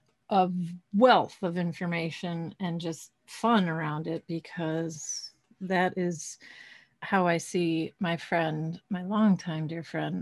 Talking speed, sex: 125 wpm, female